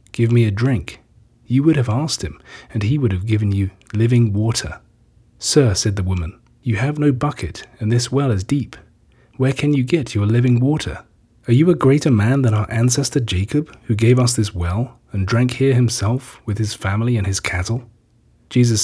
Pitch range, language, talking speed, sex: 105-130 Hz, English, 200 wpm, male